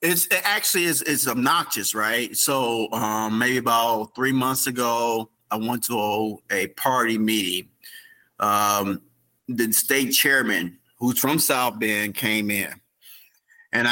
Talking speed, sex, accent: 130 wpm, male, American